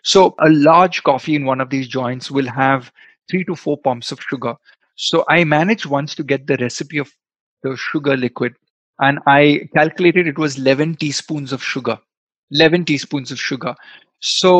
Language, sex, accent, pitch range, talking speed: Hindi, male, native, 135-160 Hz, 175 wpm